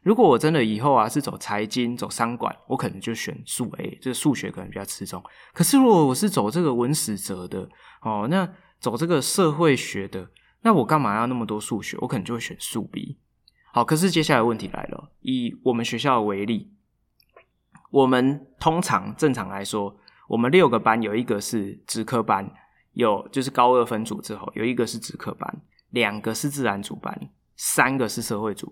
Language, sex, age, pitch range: Chinese, male, 20-39, 105-145 Hz